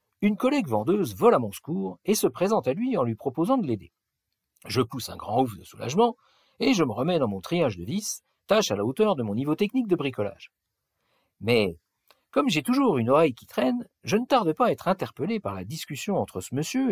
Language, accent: French, French